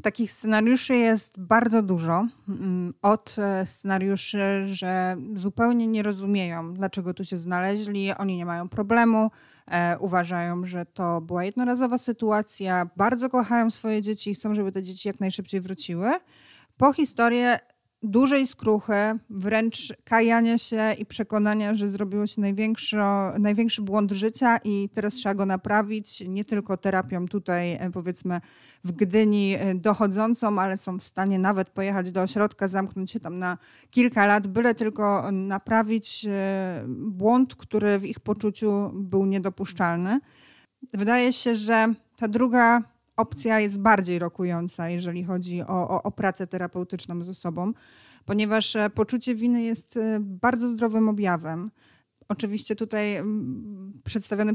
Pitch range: 190-225 Hz